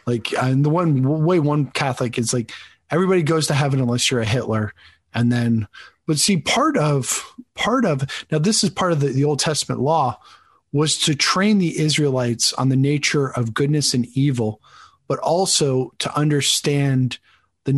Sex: male